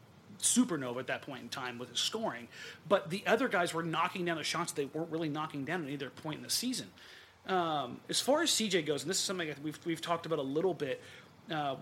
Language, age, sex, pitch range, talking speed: English, 30-49, male, 145-185 Hz, 245 wpm